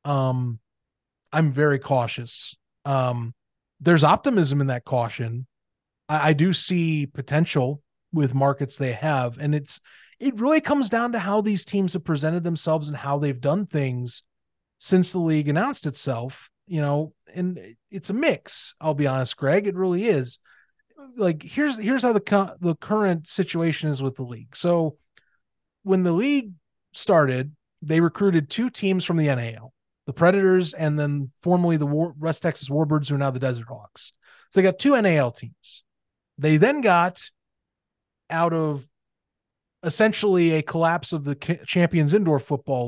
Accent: American